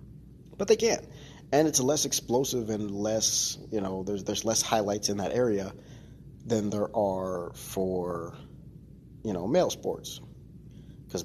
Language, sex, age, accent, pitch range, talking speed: English, male, 30-49, American, 105-145 Hz, 150 wpm